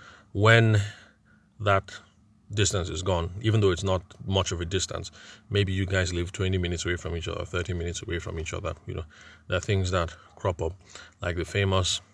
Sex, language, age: male, English, 30-49